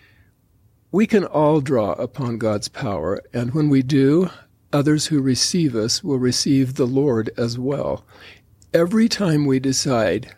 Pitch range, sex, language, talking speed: 115-155 Hz, male, English, 145 wpm